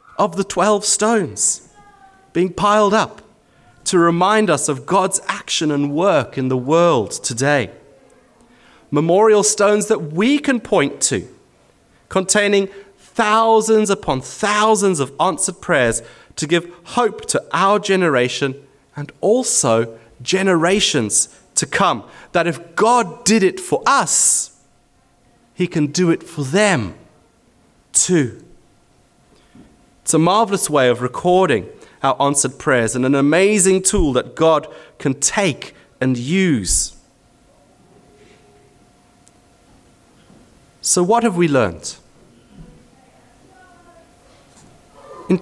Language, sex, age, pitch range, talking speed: English, male, 30-49, 145-210 Hz, 110 wpm